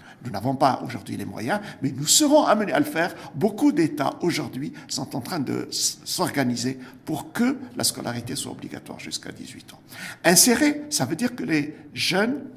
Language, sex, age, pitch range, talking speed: French, male, 60-79, 135-195 Hz, 175 wpm